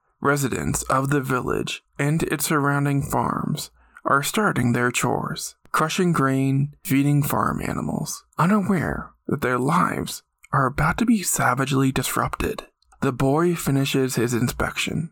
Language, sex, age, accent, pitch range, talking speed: English, male, 20-39, American, 135-170 Hz, 125 wpm